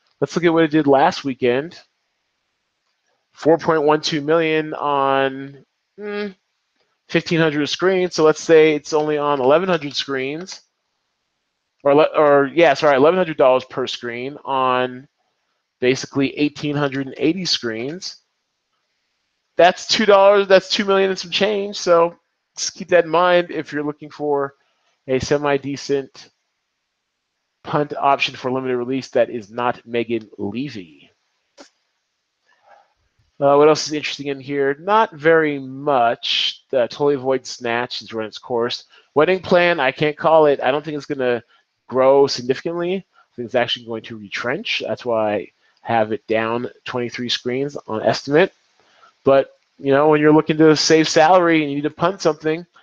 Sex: male